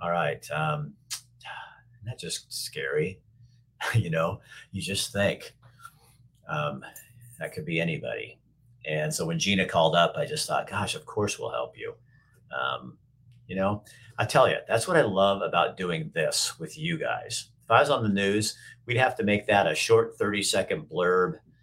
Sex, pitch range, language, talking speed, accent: male, 100-150 Hz, English, 175 wpm, American